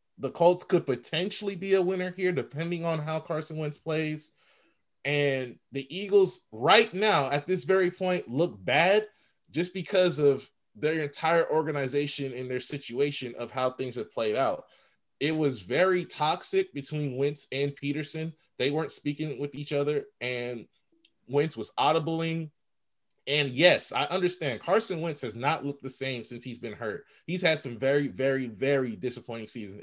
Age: 20-39